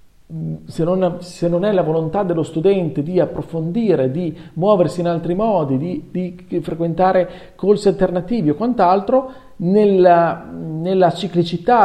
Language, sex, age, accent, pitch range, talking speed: Italian, male, 40-59, native, 150-190 Hz, 130 wpm